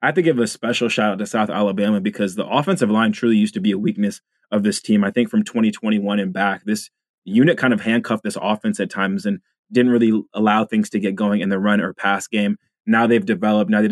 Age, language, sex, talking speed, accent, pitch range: 20-39, English, male, 250 wpm, American, 105-120 Hz